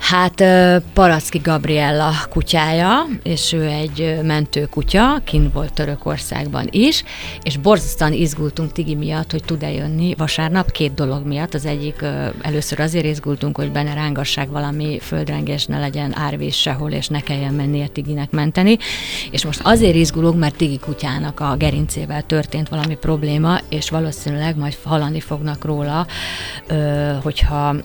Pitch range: 145-155 Hz